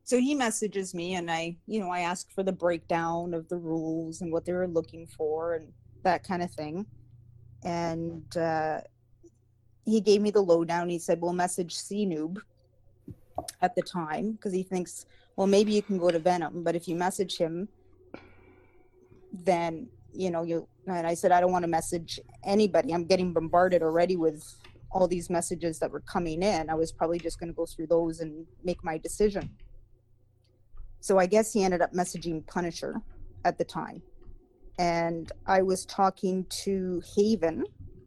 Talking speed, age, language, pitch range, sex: 180 wpm, 20-39, English, 160-190 Hz, female